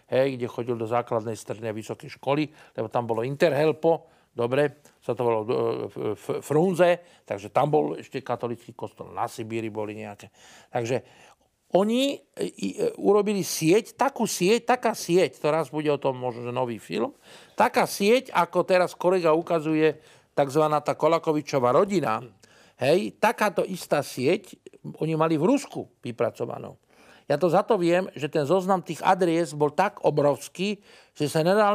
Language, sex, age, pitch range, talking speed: Slovak, male, 50-69, 135-185 Hz, 155 wpm